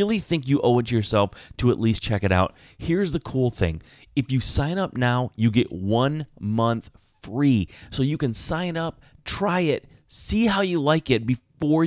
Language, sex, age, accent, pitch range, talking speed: English, male, 30-49, American, 105-140 Hz, 205 wpm